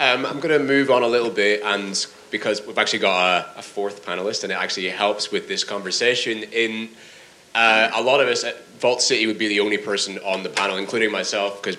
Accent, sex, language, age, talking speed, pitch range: British, male, English, 20-39, 230 wpm, 100-120 Hz